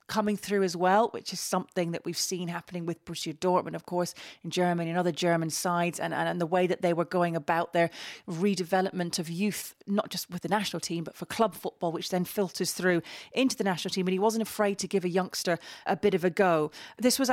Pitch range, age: 170-210 Hz, 30-49